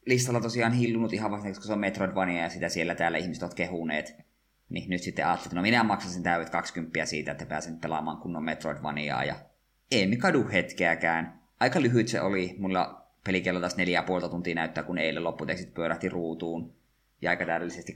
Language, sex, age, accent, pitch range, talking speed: Finnish, male, 20-39, native, 85-95 Hz, 180 wpm